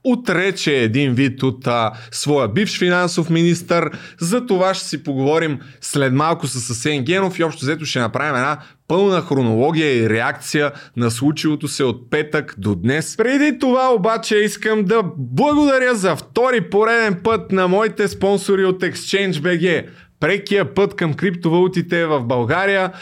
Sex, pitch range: male, 145-190 Hz